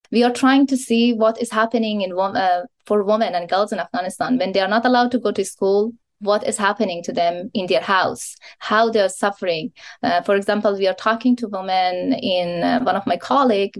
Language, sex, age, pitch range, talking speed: English, female, 20-39, 195-240 Hz, 220 wpm